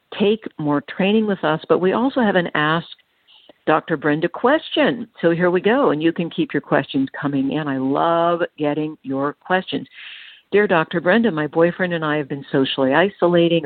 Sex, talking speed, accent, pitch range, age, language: female, 185 wpm, American, 150-205 Hz, 50-69, English